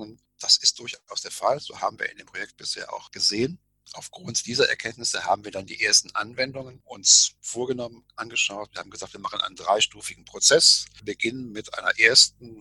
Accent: German